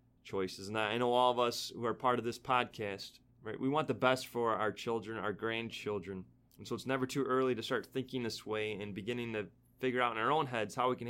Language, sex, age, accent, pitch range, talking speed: English, male, 20-39, American, 110-130 Hz, 250 wpm